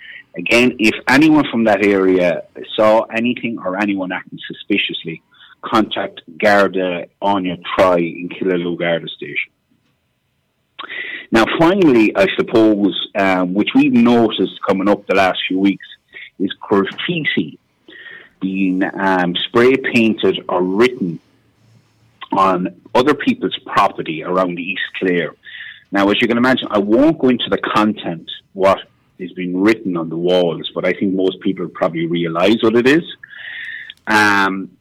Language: English